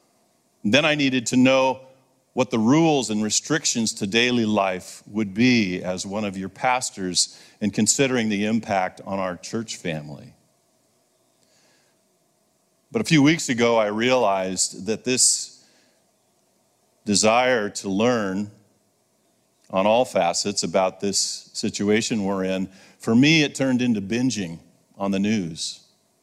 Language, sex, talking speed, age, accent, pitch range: English, male, 130 wpm, 40-59, American, 95-125 Hz